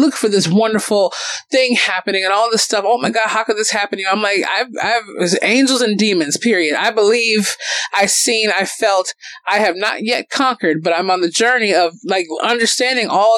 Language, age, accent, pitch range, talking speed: English, 20-39, American, 185-240 Hz, 220 wpm